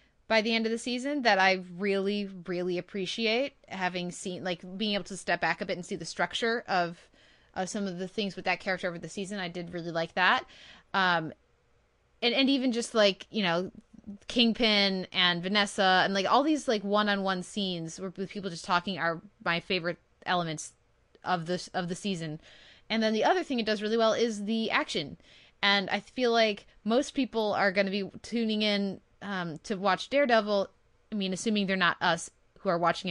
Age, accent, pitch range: 20-39, American, 185-225 Hz